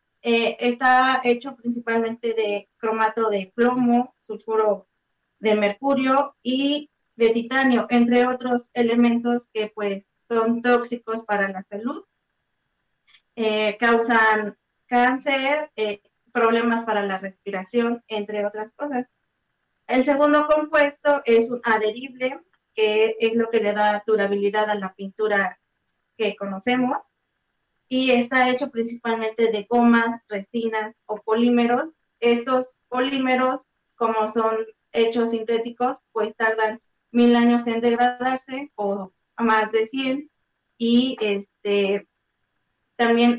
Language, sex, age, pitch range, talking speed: Spanish, female, 20-39, 215-250 Hz, 110 wpm